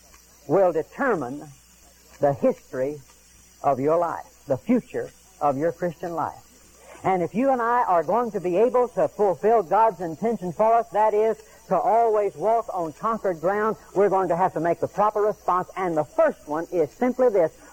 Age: 60-79